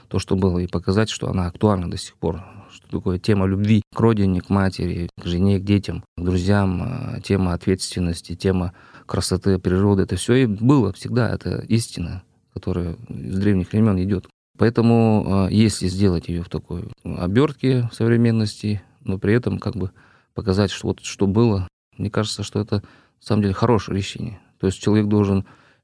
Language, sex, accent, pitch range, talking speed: Russian, male, native, 95-110 Hz, 165 wpm